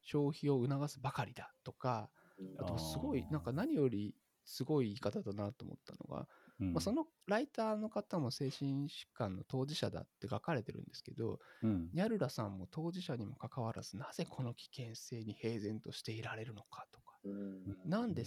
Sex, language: male, Japanese